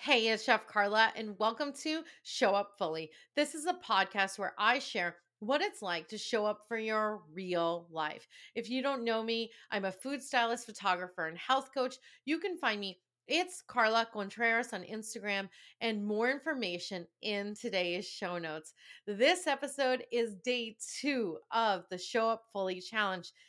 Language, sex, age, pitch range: English, female, 30-49, 190-250 Hz